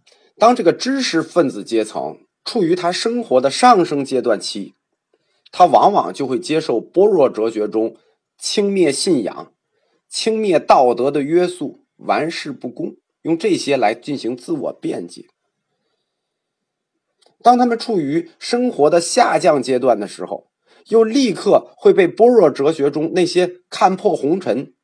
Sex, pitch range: male, 160-255 Hz